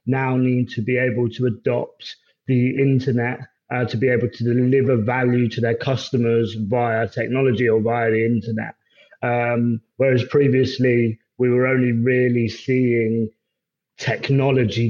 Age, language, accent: 30-49, English, British